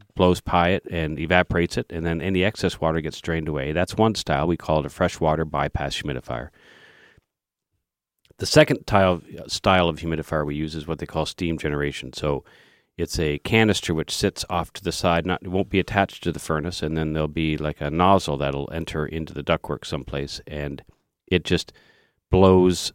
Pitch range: 80-95 Hz